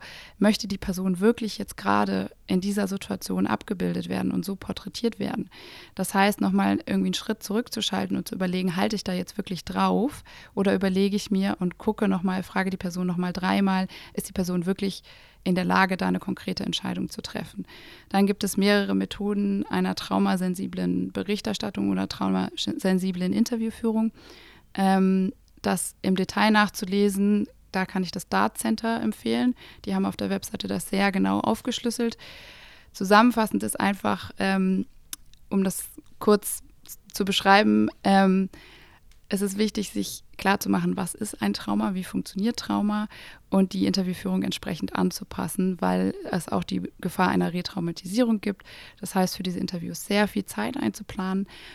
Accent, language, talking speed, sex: German, German, 150 wpm, female